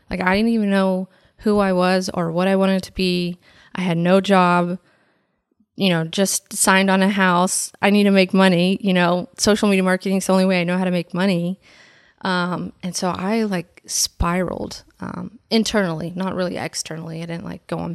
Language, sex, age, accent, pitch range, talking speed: English, female, 20-39, American, 175-195 Hz, 205 wpm